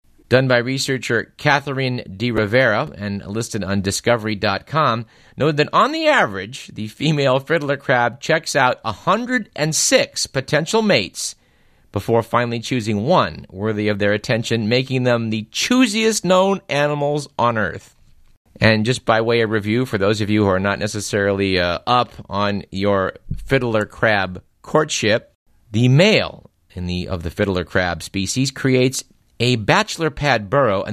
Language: English